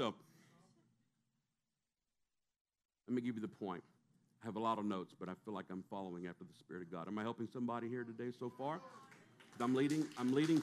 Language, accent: English, American